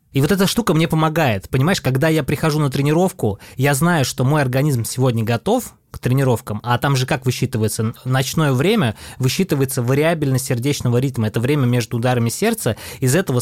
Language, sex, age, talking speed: Russian, male, 20-39, 180 wpm